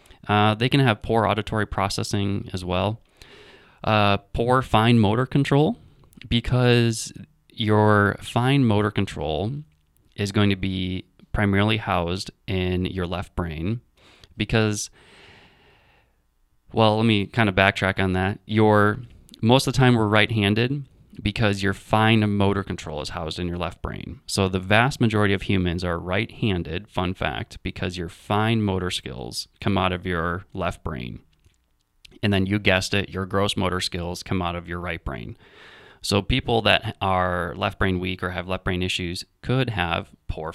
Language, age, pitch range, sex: English, 20-39, 90-110 Hz, male